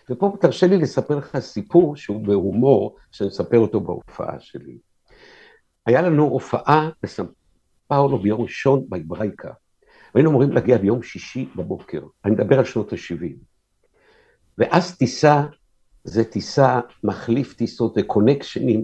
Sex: male